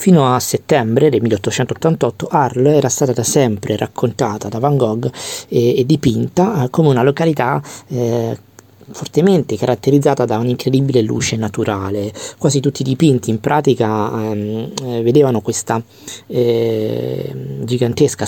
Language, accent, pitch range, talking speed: Italian, native, 110-130 Hz, 125 wpm